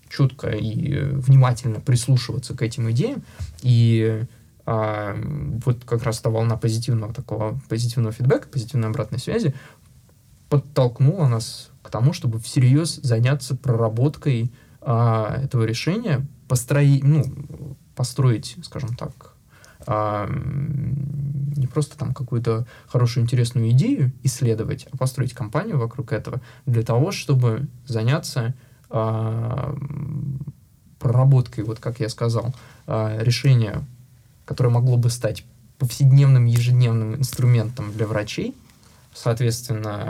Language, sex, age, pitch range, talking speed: Russian, male, 20-39, 115-140 Hz, 105 wpm